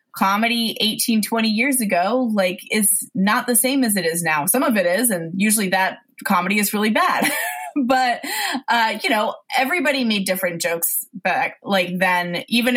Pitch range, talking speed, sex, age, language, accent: 180-240 Hz, 175 wpm, female, 20-39, English, American